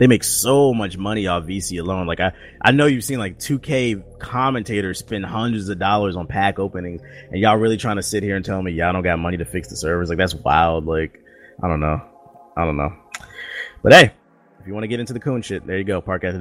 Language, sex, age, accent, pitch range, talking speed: English, male, 30-49, American, 90-110 Hz, 250 wpm